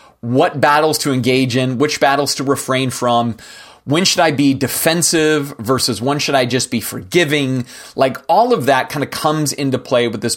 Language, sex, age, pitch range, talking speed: English, male, 30-49, 125-155 Hz, 190 wpm